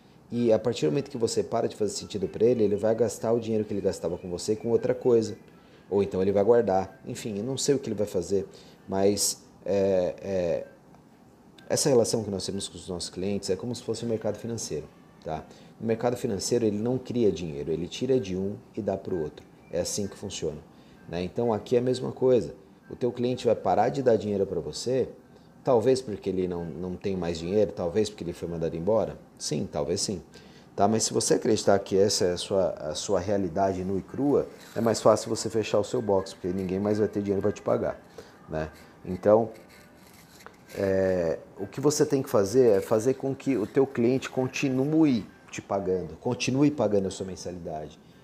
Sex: male